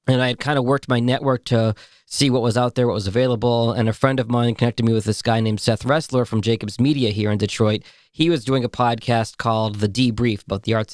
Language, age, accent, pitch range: English, 40-59, American, 115-130 Hz